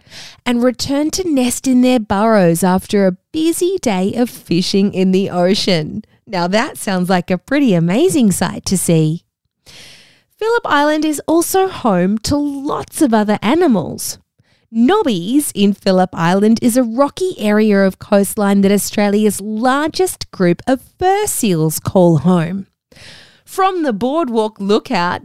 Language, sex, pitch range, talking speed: English, female, 190-280 Hz, 140 wpm